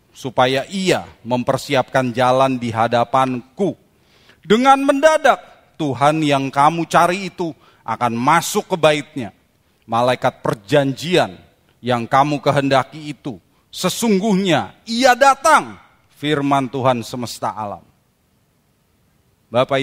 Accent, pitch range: native, 115-155 Hz